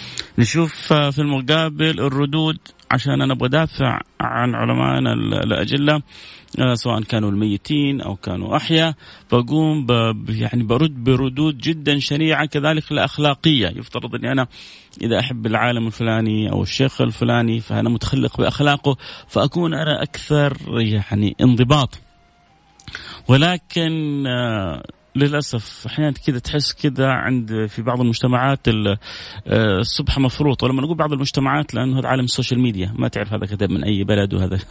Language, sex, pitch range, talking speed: Arabic, male, 110-145 Hz, 125 wpm